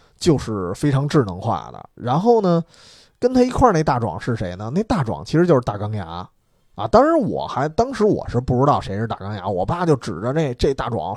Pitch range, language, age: 110-170 Hz, Chinese, 20-39